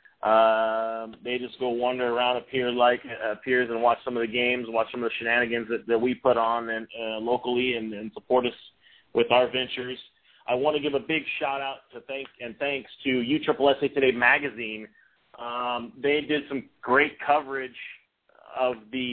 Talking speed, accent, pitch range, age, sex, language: 200 wpm, American, 115-130 Hz, 30-49, male, English